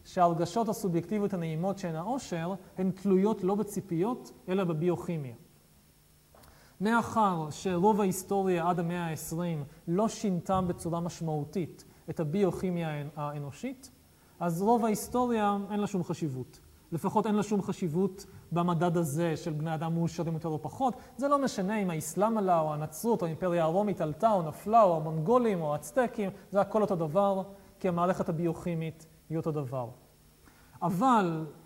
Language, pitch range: Hebrew, 160-200 Hz